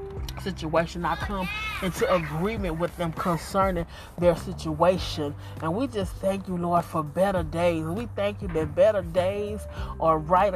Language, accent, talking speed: English, American, 155 wpm